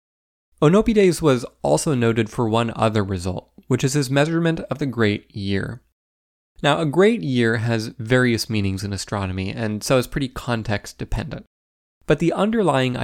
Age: 20-39